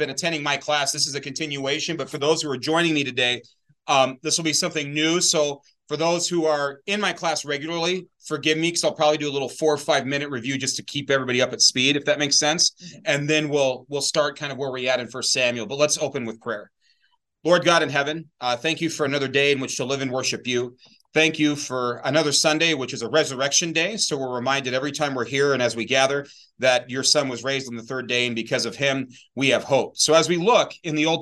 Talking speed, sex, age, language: 260 wpm, male, 30-49, English